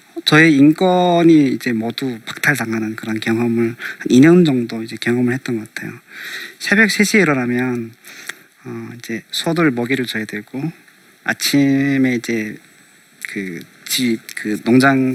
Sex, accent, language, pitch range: male, native, Korean, 115-150 Hz